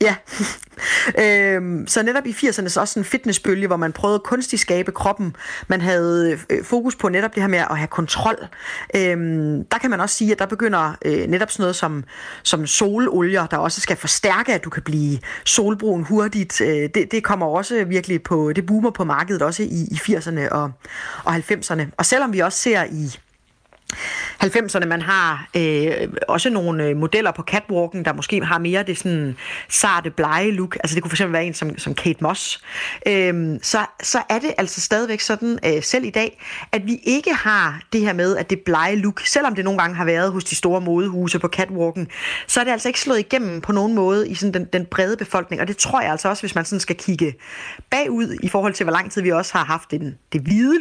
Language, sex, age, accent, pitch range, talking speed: Danish, female, 30-49, native, 170-215 Hz, 215 wpm